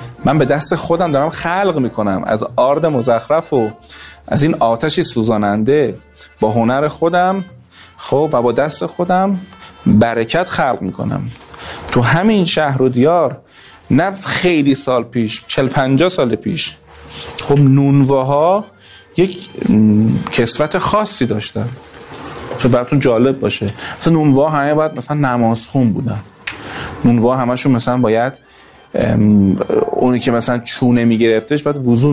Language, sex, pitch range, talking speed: Persian, male, 115-145 Hz, 130 wpm